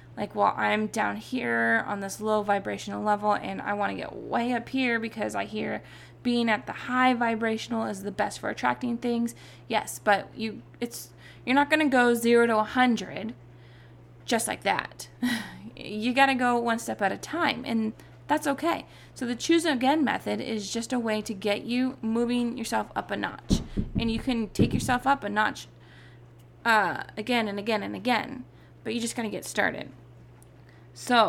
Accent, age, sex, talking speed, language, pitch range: American, 20-39, female, 195 wpm, English, 200-250 Hz